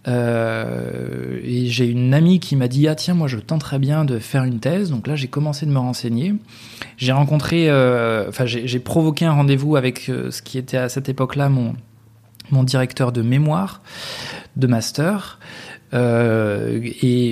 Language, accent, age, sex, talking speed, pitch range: French, French, 20-39, male, 185 wpm, 120-140 Hz